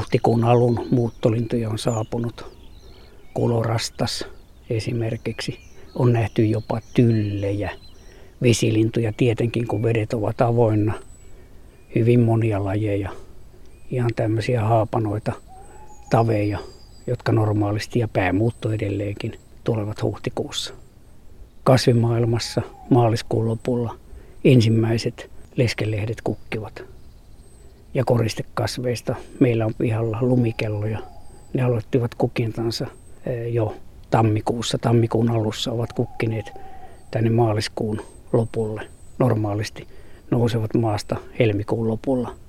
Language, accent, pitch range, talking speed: Finnish, native, 110-120 Hz, 85 wpm